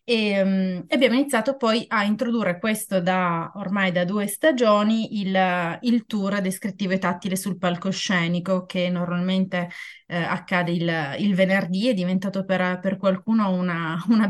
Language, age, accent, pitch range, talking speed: Italian, 20-39, native, 180-220 Hz, 145 wpm